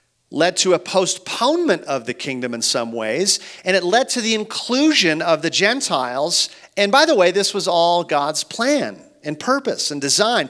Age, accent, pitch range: 40-59, American, 155-225 Hz